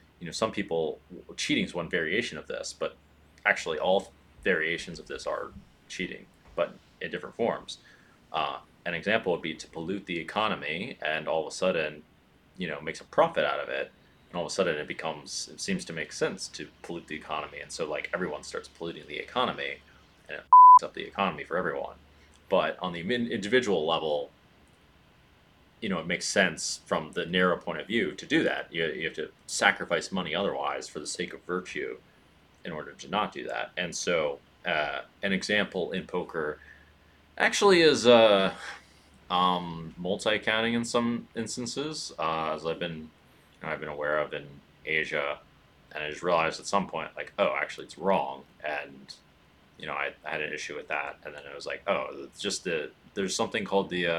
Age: 30-49